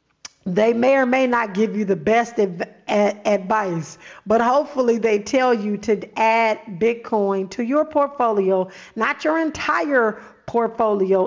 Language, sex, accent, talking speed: English, female, American, 135 wpm